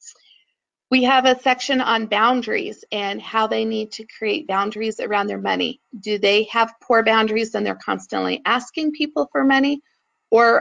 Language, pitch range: English, 210-255 Hz